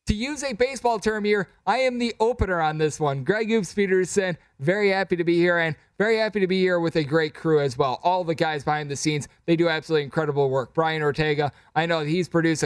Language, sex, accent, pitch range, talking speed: English, male, American, 150-170 Hz, 235 wpm